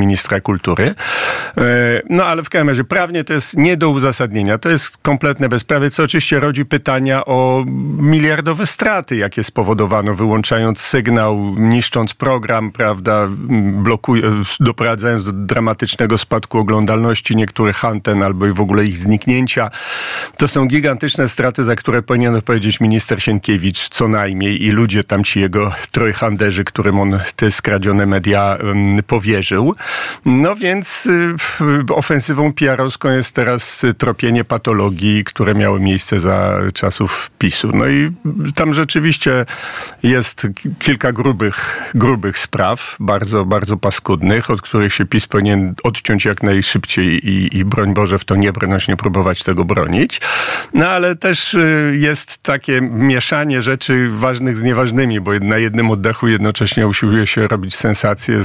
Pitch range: 105-135 Hz